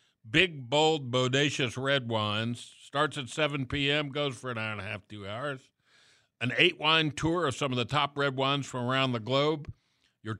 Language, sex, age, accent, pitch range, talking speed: English, male, 60-79, American, 110-140 Hz, 190 wpm